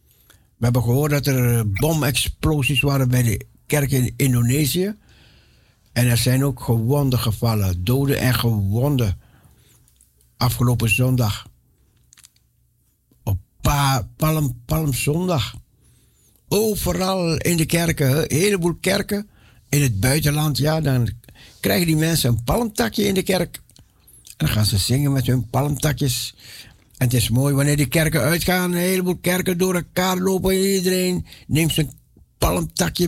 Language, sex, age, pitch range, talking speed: Dutch, male, 60-79, 115-160 Hz, 130 wpm